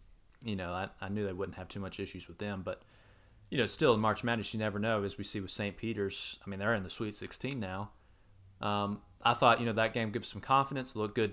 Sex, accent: male, American